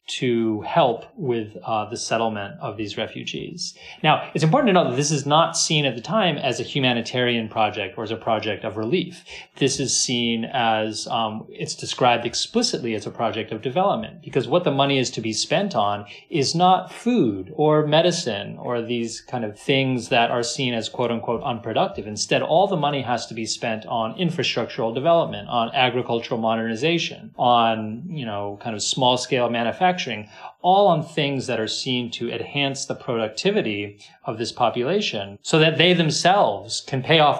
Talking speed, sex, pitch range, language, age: 180 wpm, male, 115-155 Hz, English, 30-49